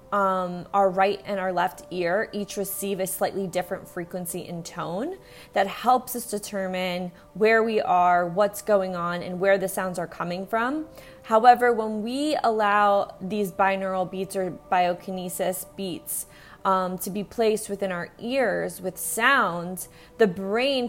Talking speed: 150 wpm